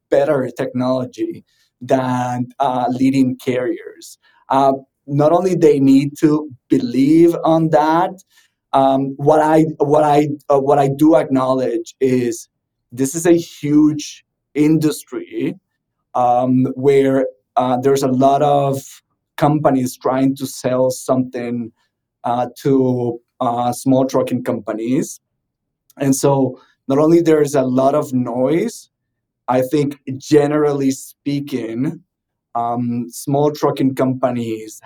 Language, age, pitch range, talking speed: English, 20-39, 125-145 Hz, 115 wpm